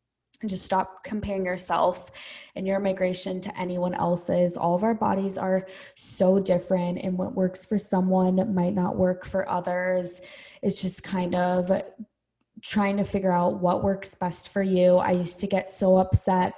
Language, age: English, 20-39